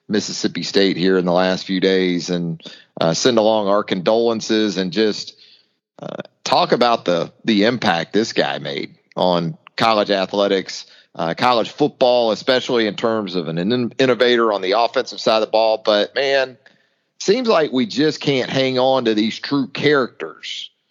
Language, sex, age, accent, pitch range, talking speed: English, male, 40-59, American, 90-115 Hz, 165 wpm